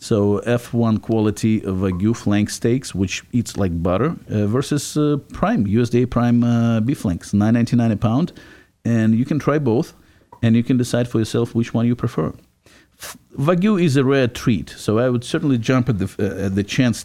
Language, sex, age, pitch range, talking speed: English, male, 50-69, 100-120 Hz, 195 wpm